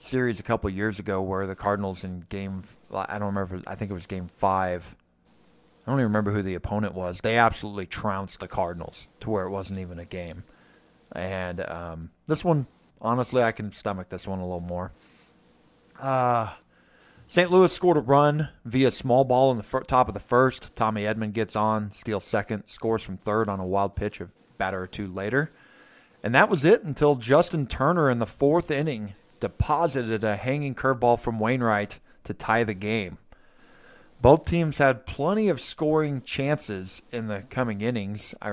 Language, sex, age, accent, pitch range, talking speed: English, male, 30-49, American, 100-125 Hz, 190 wpm